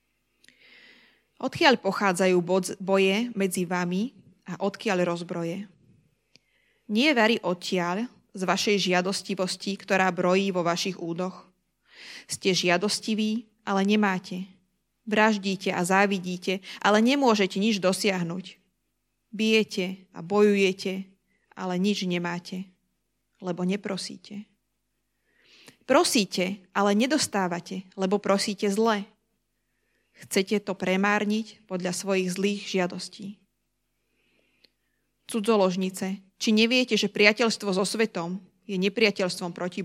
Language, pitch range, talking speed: Slovak, 185-215 Hz, 90 wpm